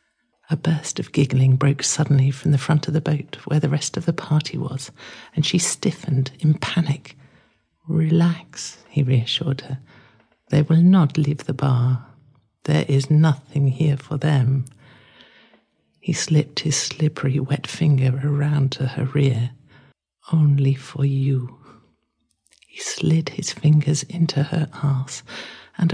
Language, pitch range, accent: English, 145-185 Hz, British